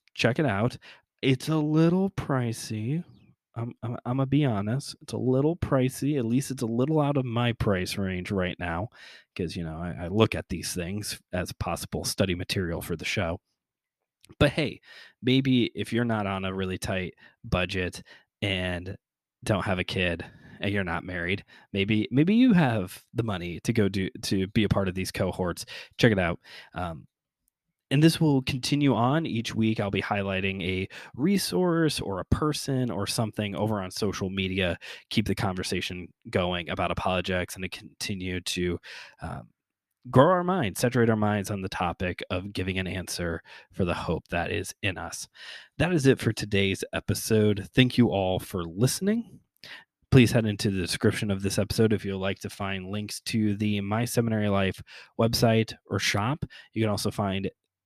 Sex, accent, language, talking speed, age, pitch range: male, American, English, 180 wpm, 20-39, 95-125 Hz